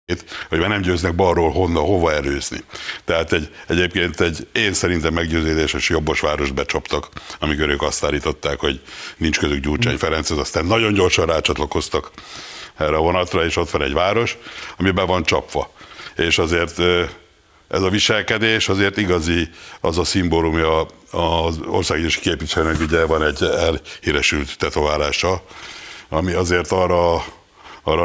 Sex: male